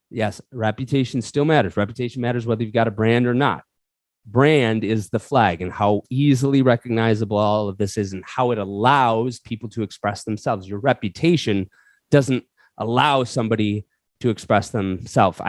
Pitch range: 100-130 Hz